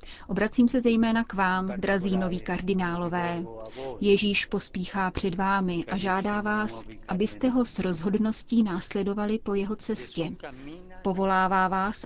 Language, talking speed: Czech, 125 wpm